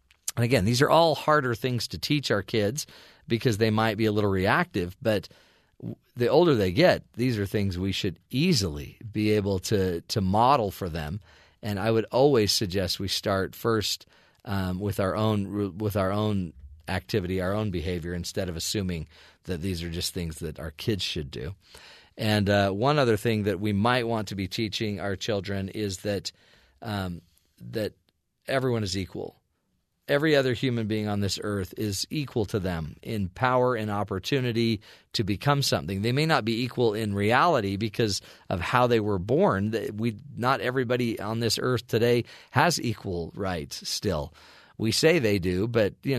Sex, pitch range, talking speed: male, 95-120 Hz, 180 wpm